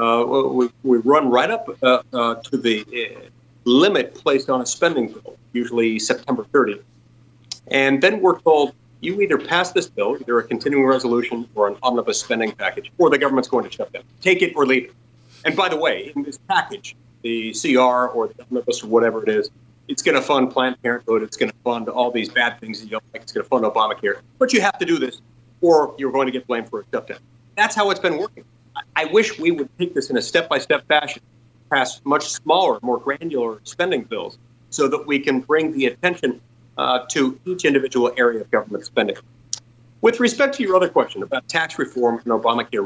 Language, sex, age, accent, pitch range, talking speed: English, male, 40-59, American, 120-200 Hz, 210 wpm